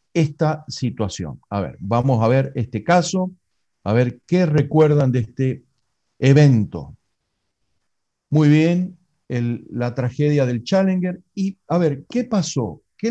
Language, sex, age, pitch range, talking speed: Spanish, male, 50-69, 125-170 Hz, 130 wpm